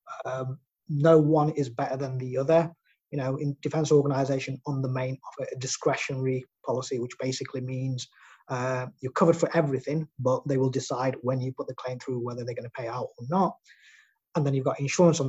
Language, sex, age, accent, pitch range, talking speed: English, male, 20-39, British, 130-150 Hz, 200 wpm